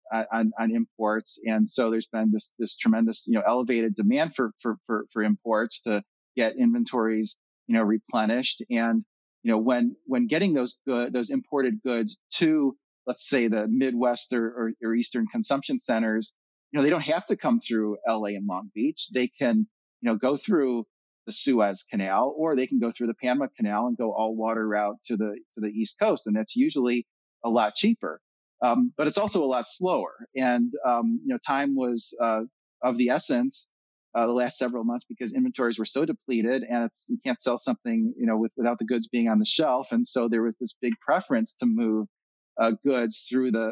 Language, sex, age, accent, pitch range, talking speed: English, male, 30-49, American, 110-135 Hz, 205 wpm